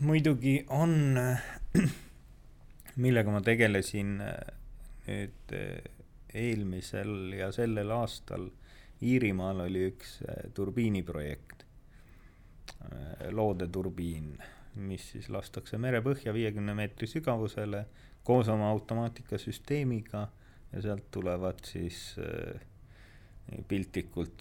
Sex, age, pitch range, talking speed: male, 30-49, 95-120 Hz, 75 wpm